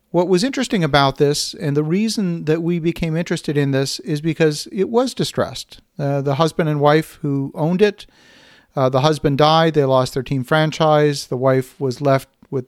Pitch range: 140-170 Hz